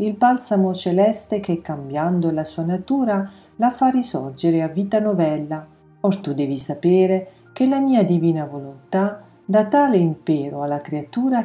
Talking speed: 145 wpm